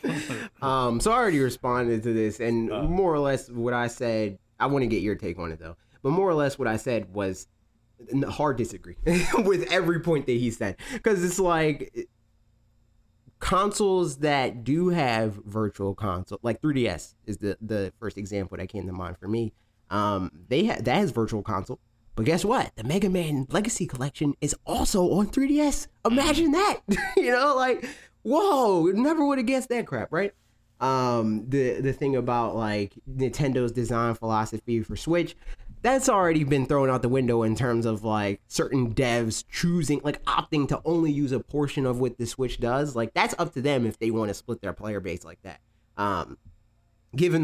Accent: American